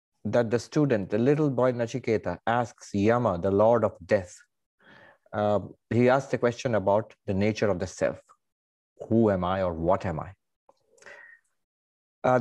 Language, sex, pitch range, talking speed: English, male, 105-130 Hz, 155 wpm